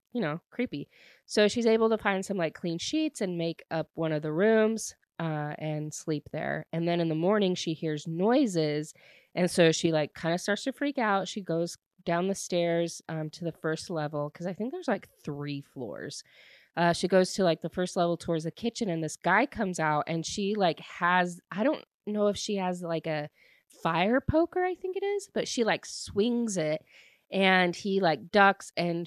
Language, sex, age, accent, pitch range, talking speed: English, female, 20-39, American, 165-225 Hz, 210 wpm